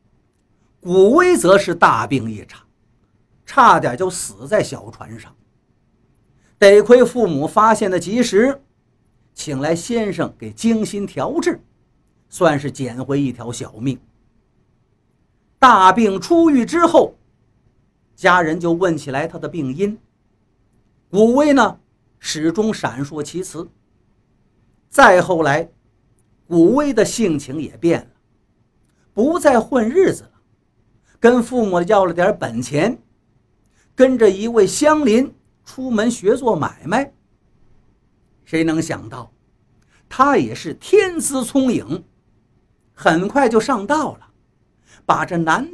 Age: 50-69